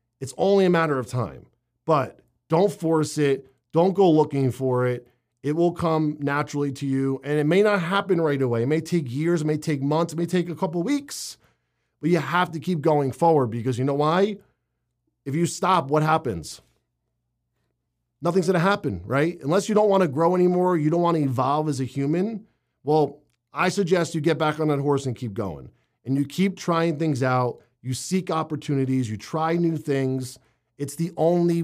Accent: American